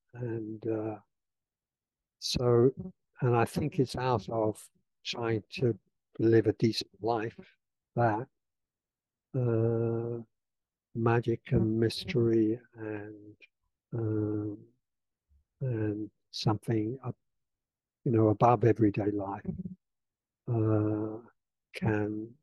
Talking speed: 85 wpm